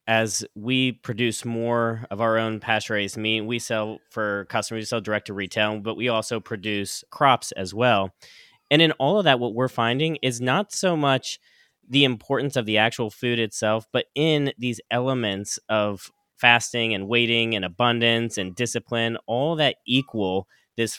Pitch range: 105-125 Hz